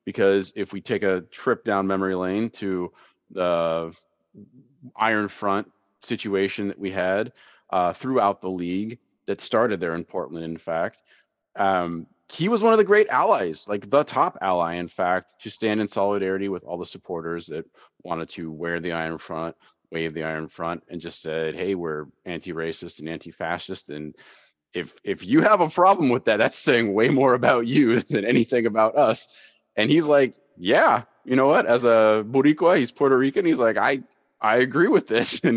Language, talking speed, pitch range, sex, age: English, 185 wpm, 85-110 Hz, male, 30-49